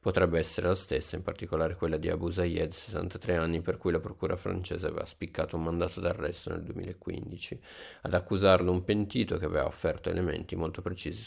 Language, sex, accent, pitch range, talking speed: Italian, male, native, 85-95 Hz, 180 wpm